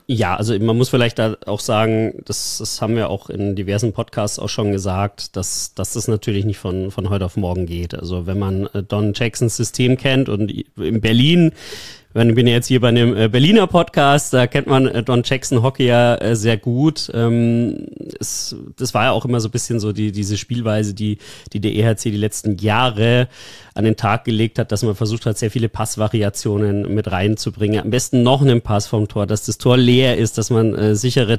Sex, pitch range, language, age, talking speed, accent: male, 110-135 Hz, German, 30-49, 200 wpm, German